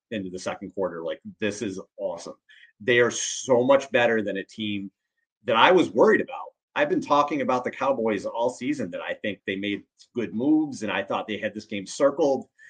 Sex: male